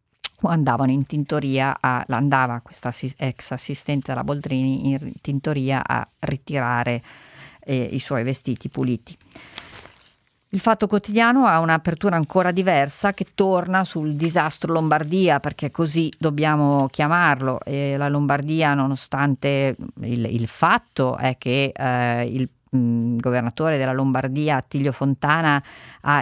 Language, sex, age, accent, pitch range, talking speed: Italian, female, 40-59, native, 130-150 Hz, 125 wpm